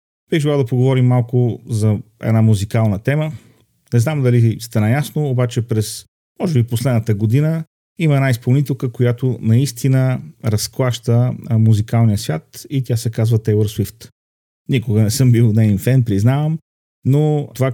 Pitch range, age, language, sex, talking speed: 110-130 Hz, 40-59, Bulgarian, male, 140 wpm